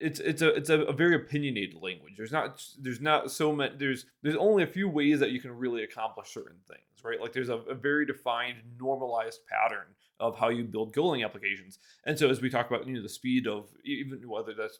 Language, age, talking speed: English, 20-39, 225 wpm